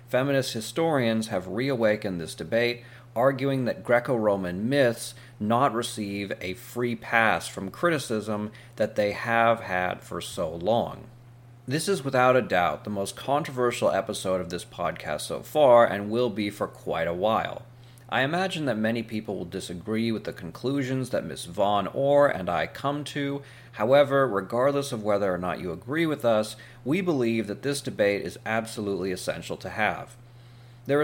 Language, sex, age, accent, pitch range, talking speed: English, male, 40-59, American, 100-130 Hz, 160 wpm